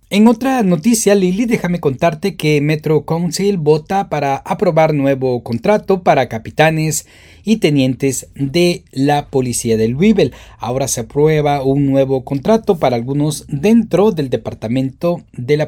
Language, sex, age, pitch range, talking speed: Spanish, male, 40-59, 125-180 Hz, 140 wpm